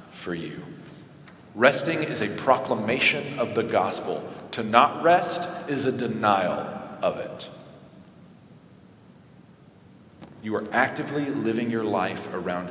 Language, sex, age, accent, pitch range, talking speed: English, male, 40-59, American, 115-150 Hz, 115 wpm